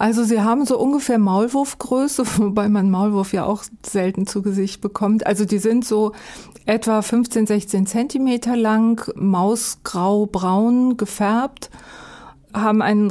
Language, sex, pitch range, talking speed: German, female, 195-225 Hz, 130 wpm